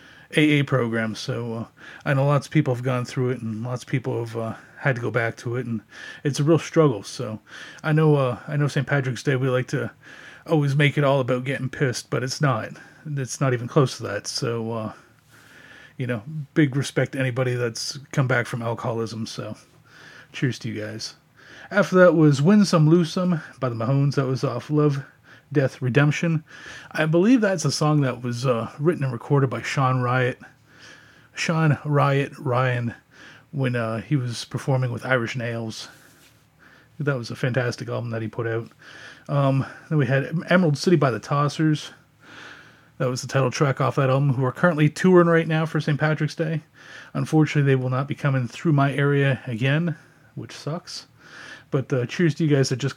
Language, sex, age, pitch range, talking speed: English, male, 30-49, 125-150 Hz, 195 wpm